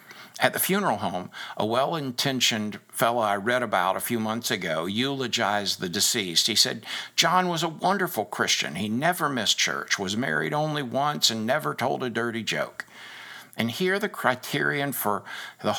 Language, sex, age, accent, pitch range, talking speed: English, male, 60-79, American, 105-135 Hz, 165 wpm